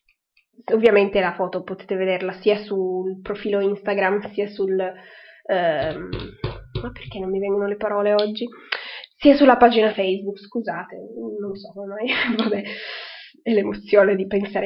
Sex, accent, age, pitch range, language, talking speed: female, native, 20-39, 195-245 Hz, Italian, 145 wpm